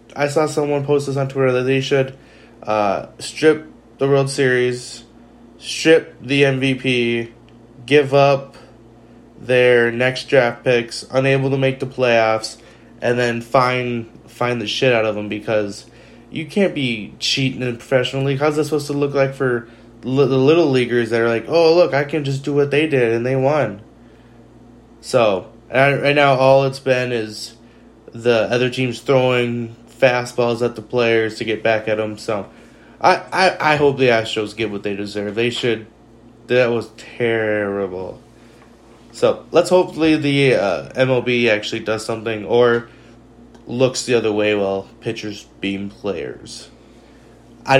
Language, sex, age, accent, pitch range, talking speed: English, male, 20-39, American, 110-135 Hz, 160 wpm